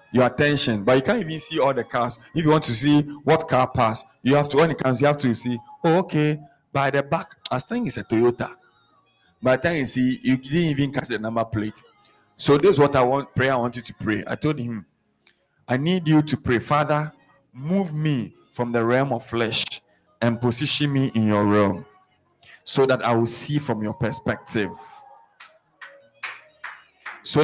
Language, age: English, 50-69